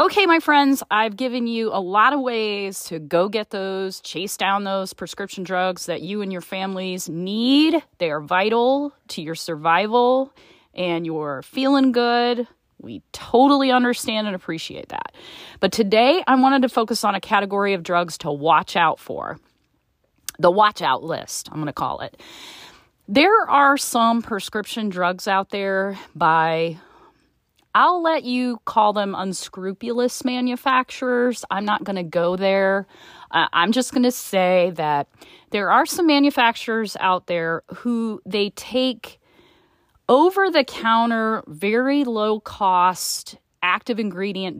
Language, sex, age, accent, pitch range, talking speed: English, female, 30-49, American, 180-245 Hz, 145 wpm